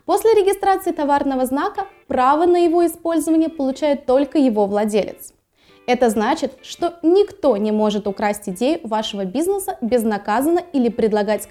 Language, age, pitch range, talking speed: Russian, 20-39, 230-330 Hz, 130 wpm